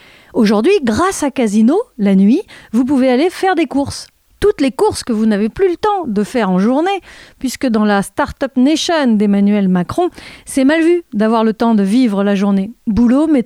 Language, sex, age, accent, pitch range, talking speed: French, female, 40-59, French, 210-285 Hz, 200 wpm